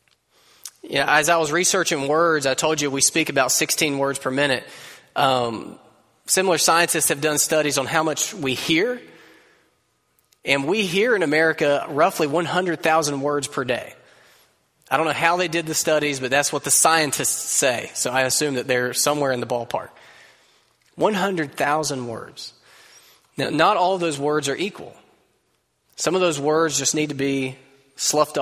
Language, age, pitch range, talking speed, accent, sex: English, 20-39, 130-165 Hz, 170 wpm, American, male